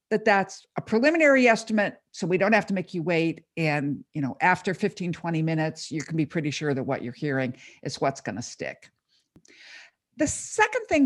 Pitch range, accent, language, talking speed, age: 160-235 Hz, American, English, 195 wpm, 50-69